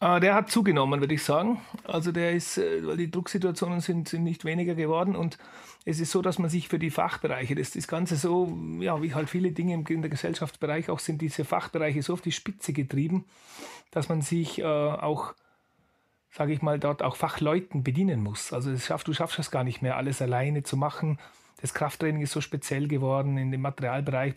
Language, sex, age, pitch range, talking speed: German, male, 30-49, 145-170 Hz, 205 wpm